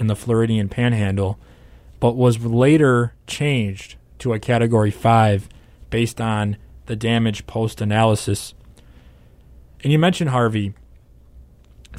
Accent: American